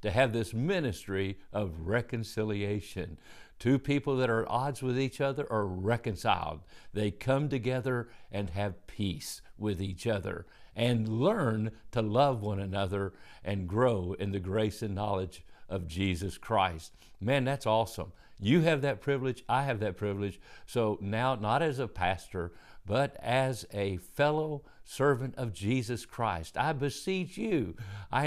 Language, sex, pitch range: English, male, 100-130 Hz